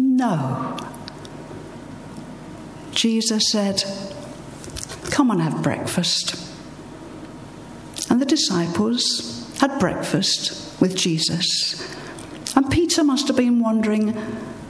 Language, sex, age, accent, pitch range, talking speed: English, female, 60-79, British, 170-245 Hz, 80 wpm